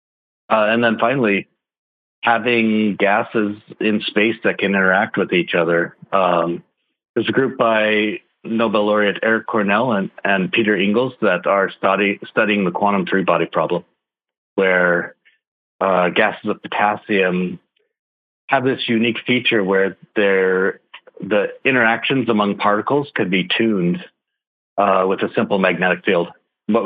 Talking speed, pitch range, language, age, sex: 130 wpm, 90-110 Hz, English, 50-69, male